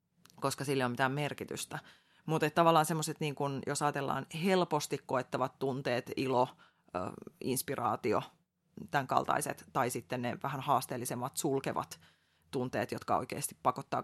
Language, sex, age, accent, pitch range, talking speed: Finnish, female, 30-49, native, 130-175 Hz, 125 wpm